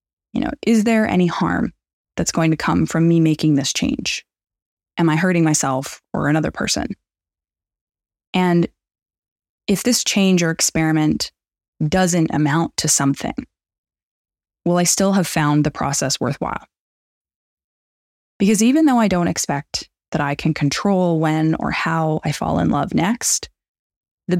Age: 20-39